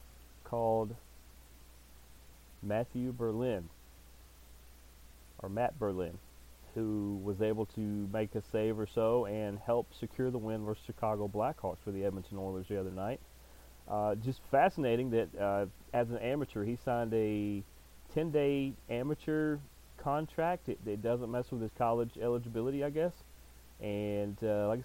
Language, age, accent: English, 30-49, American